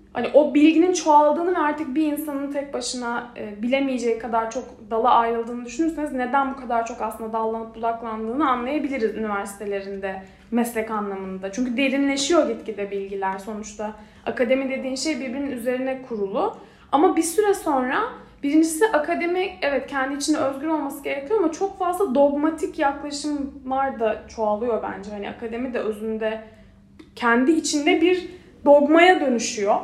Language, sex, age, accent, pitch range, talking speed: Turkish, female, 10-29, native, 225-315 Hz, 135 wpm